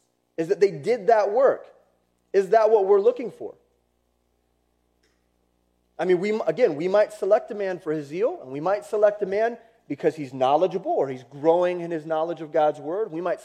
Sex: male